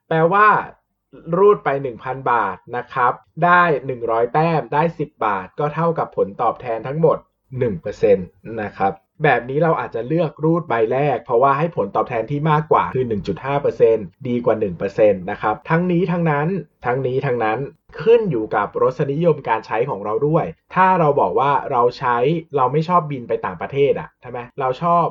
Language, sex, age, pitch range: Thai, male, 20-39, 120-175 Hz